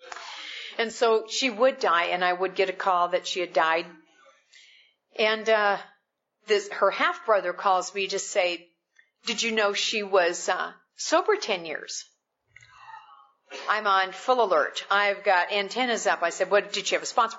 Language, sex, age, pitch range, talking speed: English, female, 50-69, 195-320 Hz, 175 wpm